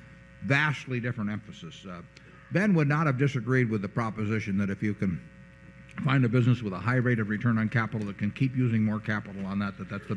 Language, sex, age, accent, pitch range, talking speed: English, male, 50-69, American, 105-140 Hz, 225 wpm